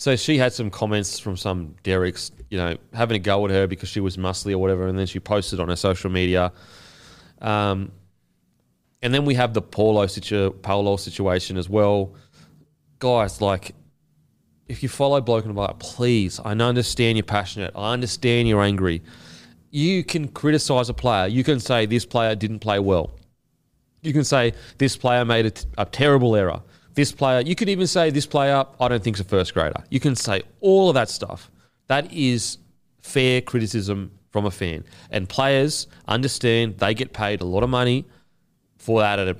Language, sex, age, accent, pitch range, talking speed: English, male, 30-49, Australian, 100-135 Hz, 185 wpm